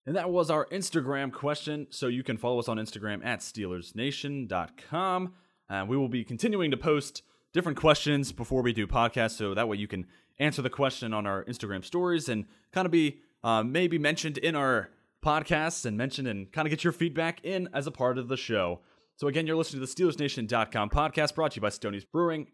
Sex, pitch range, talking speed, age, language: male, 115-155 Hz, 210 wpm, 20-39, English